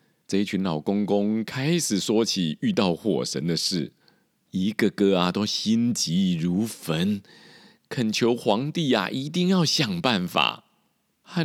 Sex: male